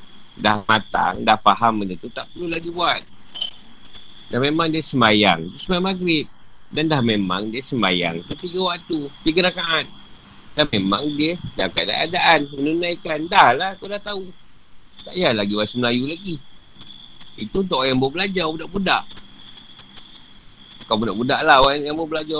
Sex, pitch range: male, 115-175 Hz